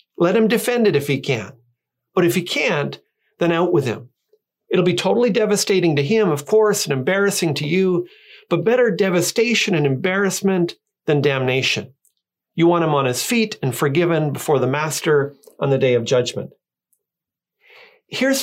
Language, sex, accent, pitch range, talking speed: English, male, American, 150-220 Hz, 165 wpm